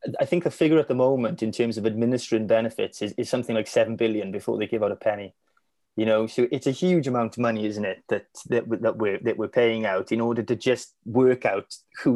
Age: 20-39